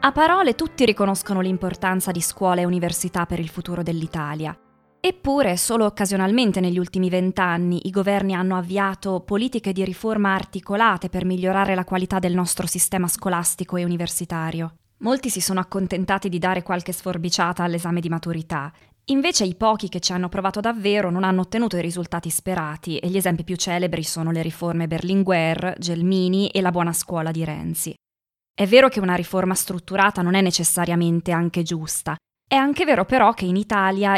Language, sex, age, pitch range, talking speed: Italian, female, 20-39, 175-210 Hz, 170 wpm